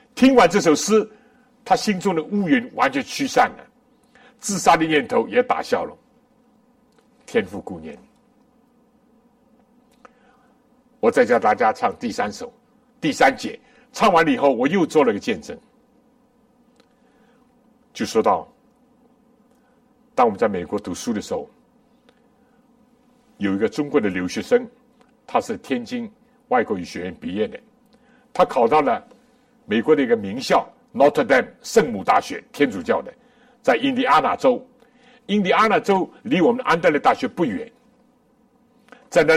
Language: Chinese